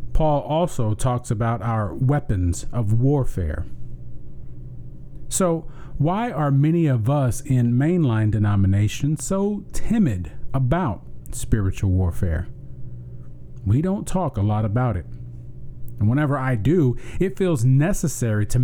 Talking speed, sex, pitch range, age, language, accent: 120 wpm, male, 115-140 Hz, 40-59, English, American